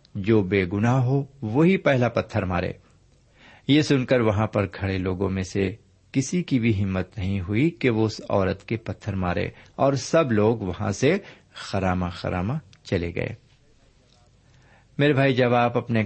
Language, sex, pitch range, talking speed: Urdu, male, 100-130 Hz, 165 wpm